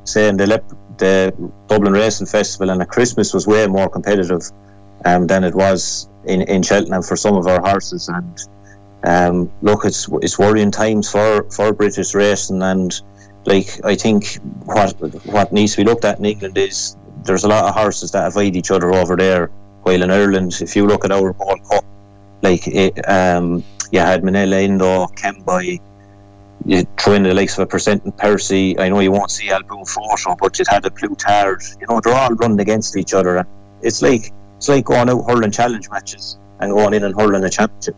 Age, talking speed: 30-49, 200 wpm